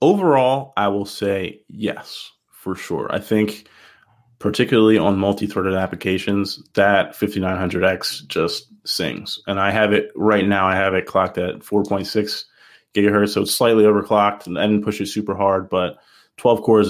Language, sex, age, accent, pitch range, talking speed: English, male, 20-39, American, 95-115 Hz, 155 wpm